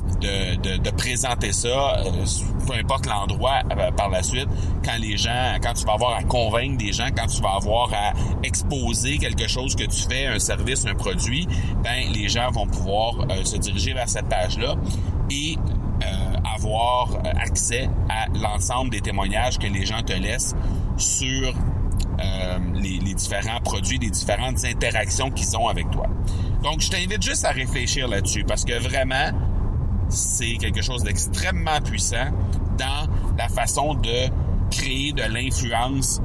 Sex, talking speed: male, 165 wpm